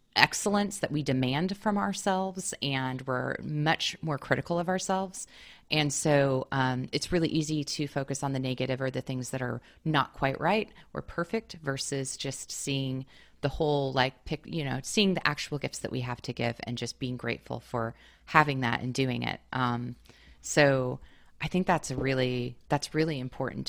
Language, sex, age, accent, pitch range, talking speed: English, female, 30-49, American, 130-180 Hz, 180 wpm